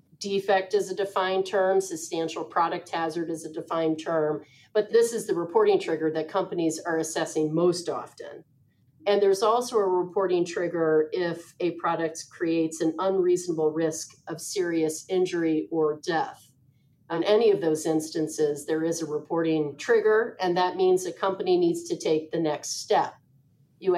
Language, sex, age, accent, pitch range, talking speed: English, female, 40-59, American, 160-195 Hz, 160 wpm